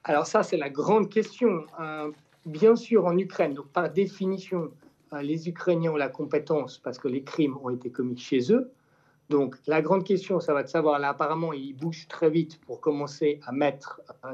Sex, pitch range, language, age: male, 145-165 Hz, French, 50-69